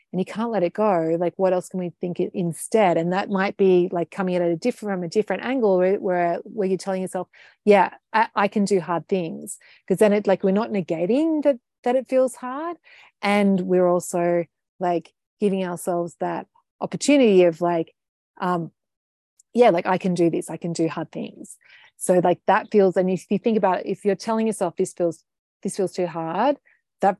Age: 30-49